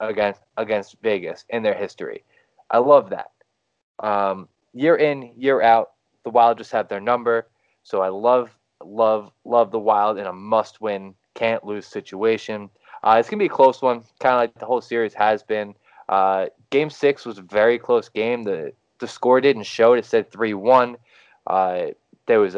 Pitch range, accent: 110-135 Hz, American